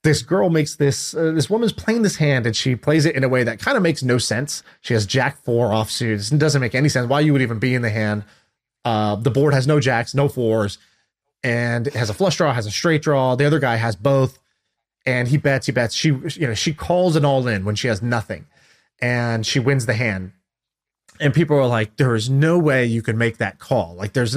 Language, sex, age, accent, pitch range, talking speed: English, male, 30-49, American, 115-150 Hz, 250 wpm